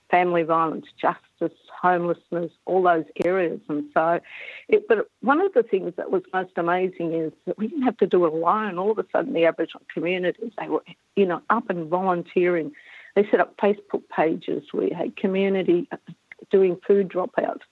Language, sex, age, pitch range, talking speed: English, female, 50-69, 170-195 Hz, 180 wpm